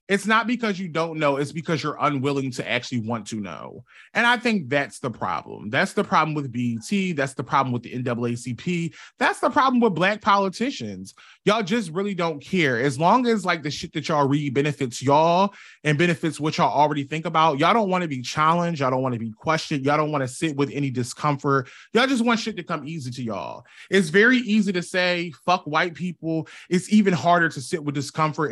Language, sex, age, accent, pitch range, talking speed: English, male, 20-39, American, 130-175 Hz, 220 wpm